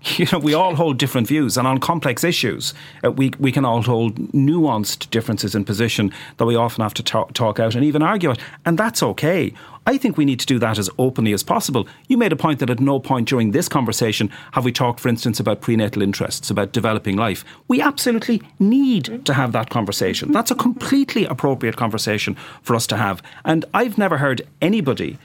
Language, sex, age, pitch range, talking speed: English, male, 40-59, 110-150 Hz, 215 wpm